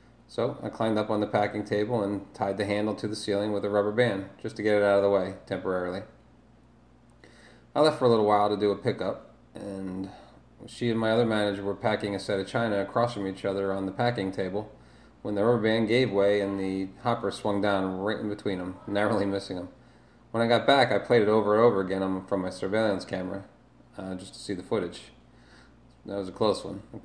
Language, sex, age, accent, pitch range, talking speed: English, male, 30-49, American, 100-120 Hz, 230 wpm